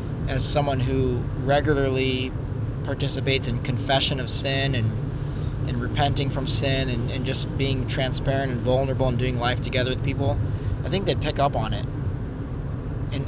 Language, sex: English, male